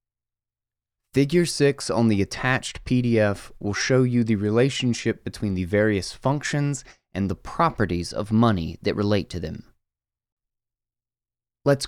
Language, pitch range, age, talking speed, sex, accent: English, 105-135 Hz, 20-39, 125 wpm, male, American